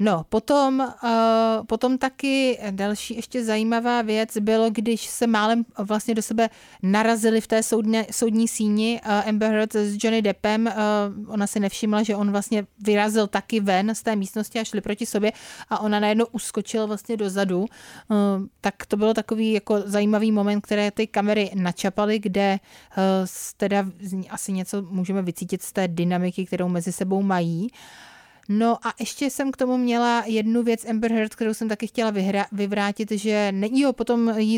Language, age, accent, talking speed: Czech, 30-49, native, 170 wpm